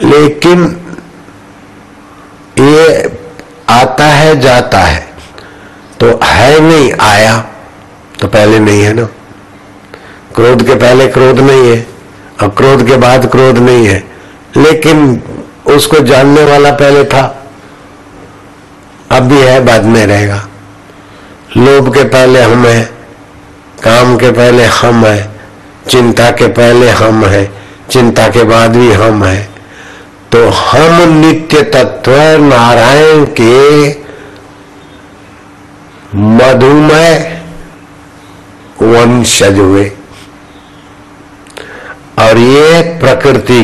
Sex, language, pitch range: male, Hindi, 100-140 Hz